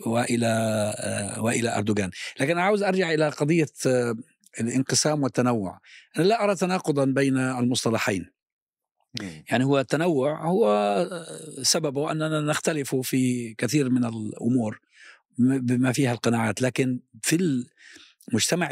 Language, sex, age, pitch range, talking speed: Arabic, male, 50-69, 120-160 Hz, 115 wpm